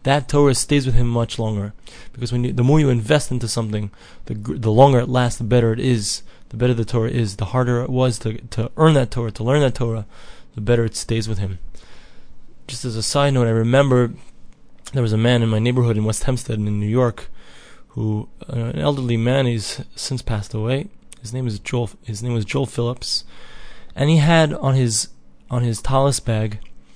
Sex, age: male, 20-39